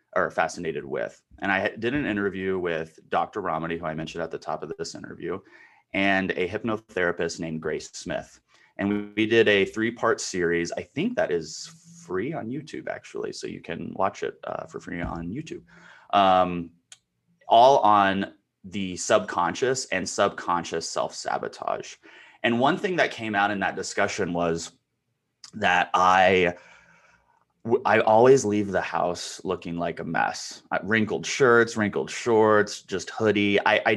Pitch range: 85-115 Hz